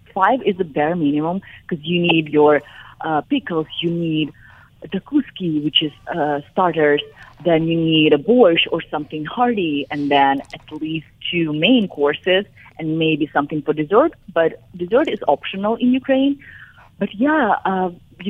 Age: 30-49